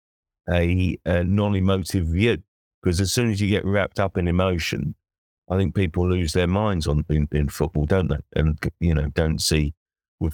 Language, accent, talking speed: English, British, 185 wpm